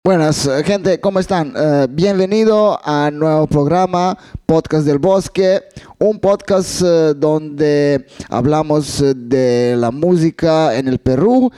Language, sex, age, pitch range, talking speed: Spanish, male, 20-39, 140-170 Hz, 125 wpm